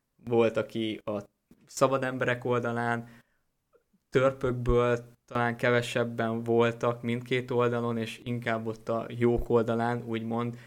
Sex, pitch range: male, 115-120 Hz